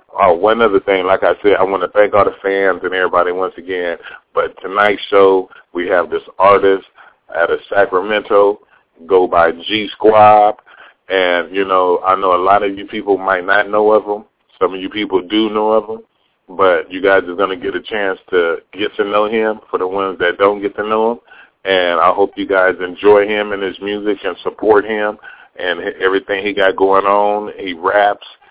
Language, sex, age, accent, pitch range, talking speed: English, male, 30-49, American, 95-105 Hz, 205 wpm